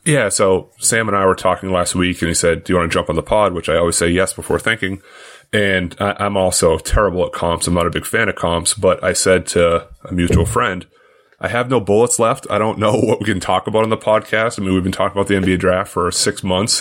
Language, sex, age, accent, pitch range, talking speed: English, male, 30-49, American, 90-100 Hz, 270 wpm